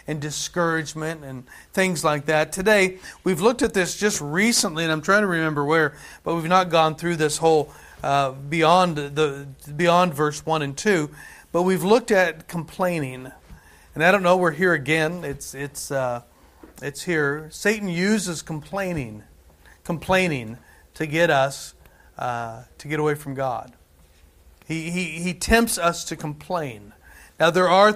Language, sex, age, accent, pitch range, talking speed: English, male, 40-59, American, 150-195 Hz, 160 wpm